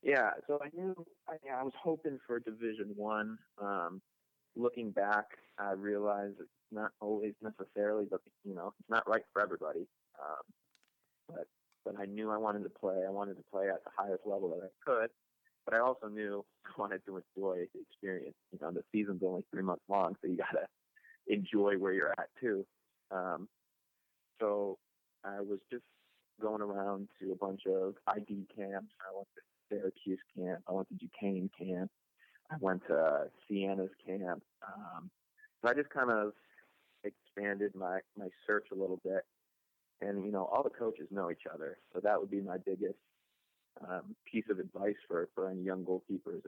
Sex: male